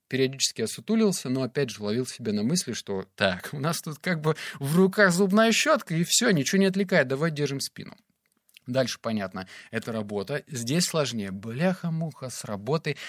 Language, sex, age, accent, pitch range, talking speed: Russian, male, 20-39, native, 115-170 Hz, 170 wpm